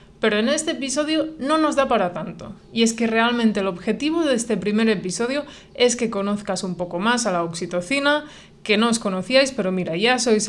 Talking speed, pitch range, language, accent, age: 205 wpm, 195-245 Hz, Spanish, Spanish, 20-39